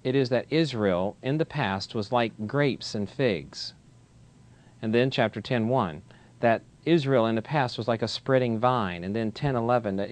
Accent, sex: American, male